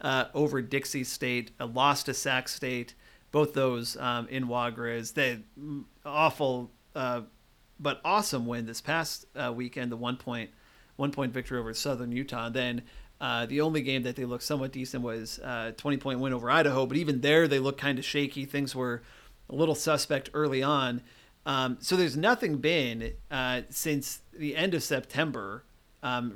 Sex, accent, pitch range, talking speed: male, American, 125-150 Hz, 165 wpm